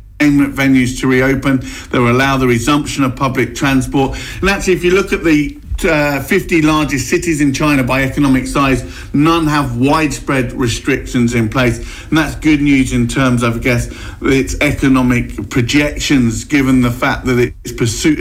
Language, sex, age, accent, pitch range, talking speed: English, male, 50-69, British, 120-145 Hz, 170 wpm